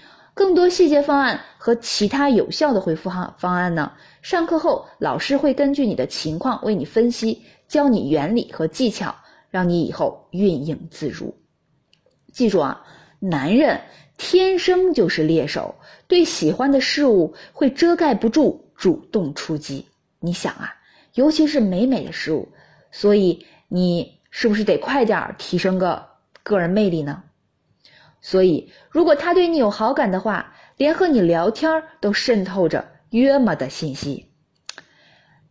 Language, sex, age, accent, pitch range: Chinese, female, 20-39, native, 170-285 Hz